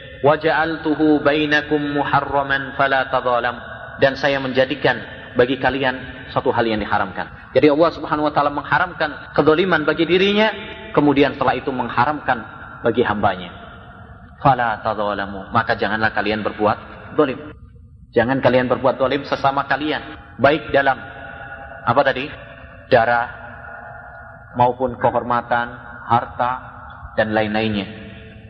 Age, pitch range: 30-49, 115-150 Hz